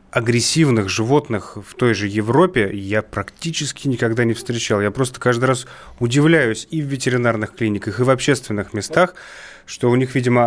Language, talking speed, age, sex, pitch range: Russian, 160 wpm, 30-49, male, 110-135 Hz